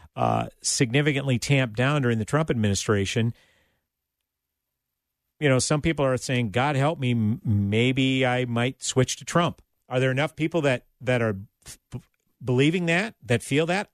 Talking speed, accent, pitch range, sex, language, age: 150 wpm, American, 125-175 Hz, male, English, 50-69